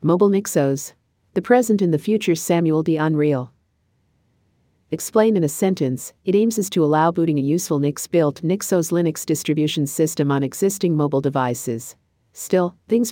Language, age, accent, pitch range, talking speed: English, 50-69, American, 135-180 Hz, 150 wpm